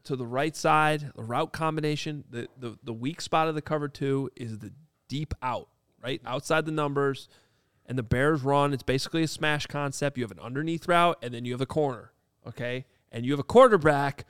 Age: 30-49